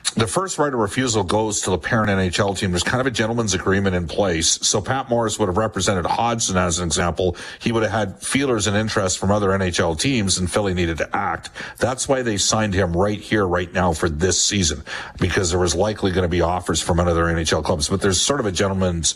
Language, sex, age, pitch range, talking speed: English, male, 50-69, 90-120 Hz, 235 wpm